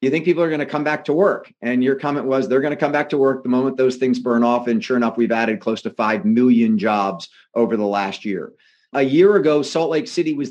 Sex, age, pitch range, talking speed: male, 40-59, 120-150 Hz, 275 wpm